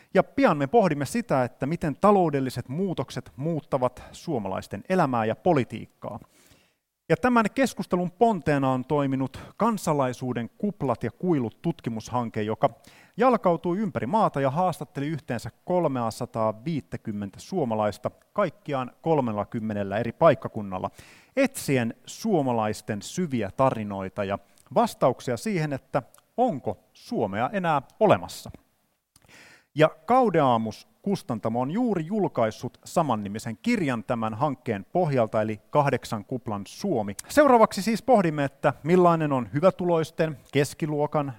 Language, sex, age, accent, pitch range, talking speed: Finnish, male, 30-49, native, 120-175 Hz, 105 wpm